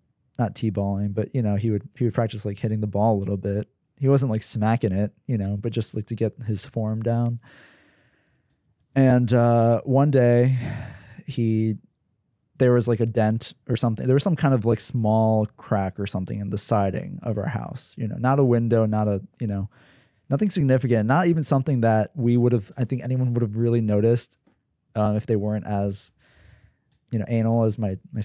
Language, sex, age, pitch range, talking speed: English, male, 20-39, 105-125 Hz, 205 wpm